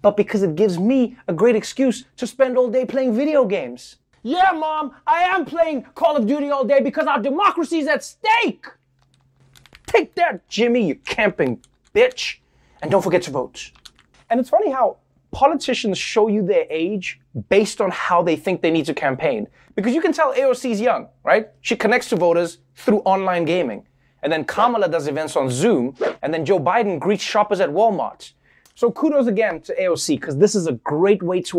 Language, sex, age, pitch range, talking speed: English, male, 20-39, 175-280 Hz, 190 wpm